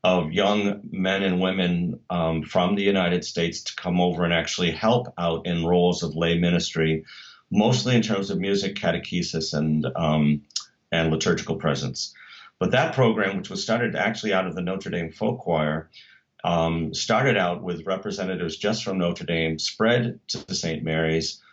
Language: English